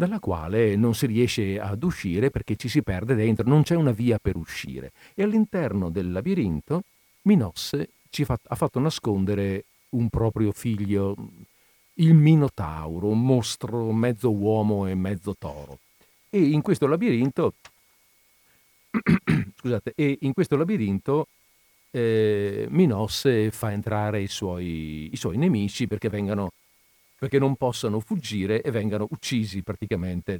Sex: male